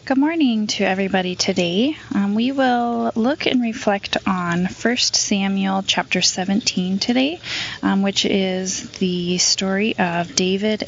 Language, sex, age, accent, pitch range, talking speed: English, female, 20-39, American, 180-220 Hz, 130 wpm